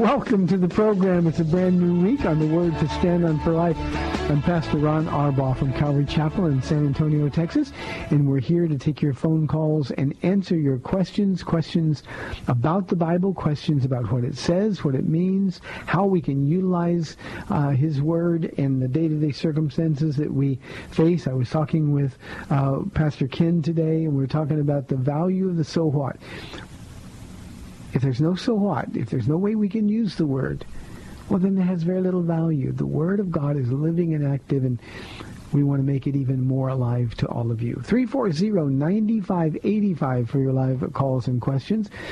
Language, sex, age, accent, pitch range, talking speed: English, male, 50-69, American, 140-180 Hz, 190 wpm